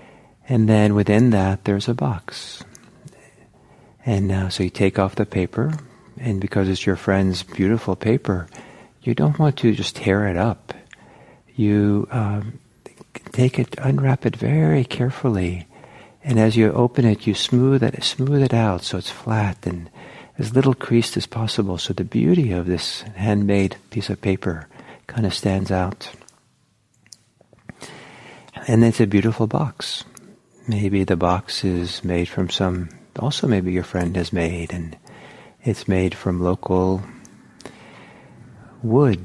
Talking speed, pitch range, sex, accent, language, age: 145 wpm, 90-115 Hz, male, American, English, 50-69